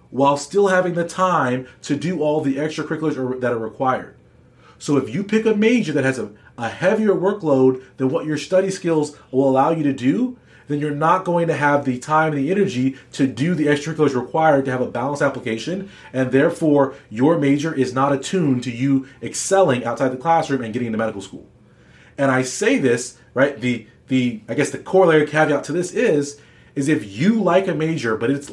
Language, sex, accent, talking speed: English, male, American, 205 wpm